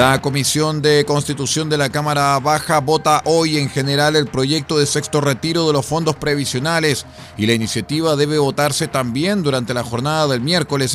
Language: Spanish